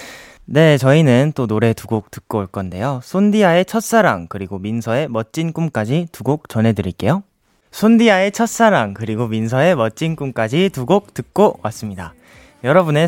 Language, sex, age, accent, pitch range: Korean, male, 20-39, native, 105-160 Hz